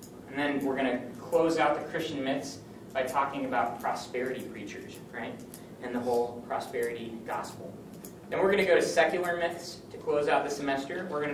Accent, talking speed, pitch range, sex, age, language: American, 190 wpm, 125-160 Hz, male, 30-49, English